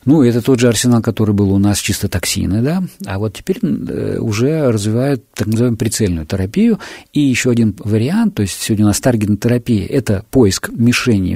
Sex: male